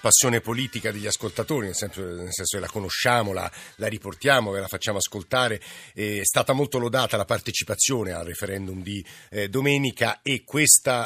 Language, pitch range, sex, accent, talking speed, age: Italian, 95-120 Hz, male, native, 170 wpm, 50-69